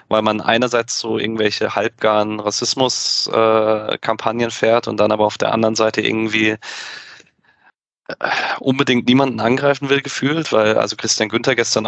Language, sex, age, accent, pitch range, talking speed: German, male, 20-39, German, 105-120 Hz, 135 wpm